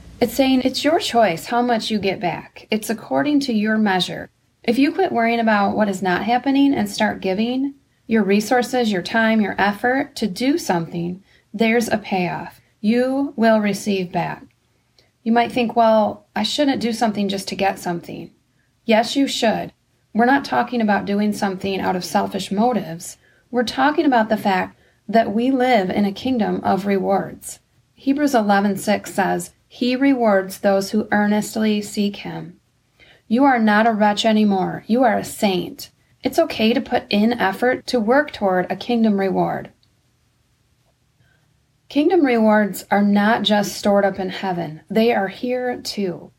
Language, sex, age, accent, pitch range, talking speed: English, female, 30-49, American, 195-245 Hz, 165 wpm